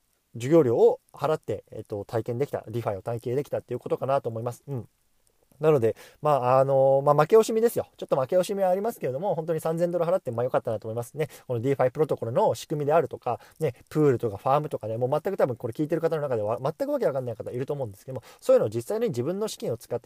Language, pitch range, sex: Japanese, 115-185 Hz, male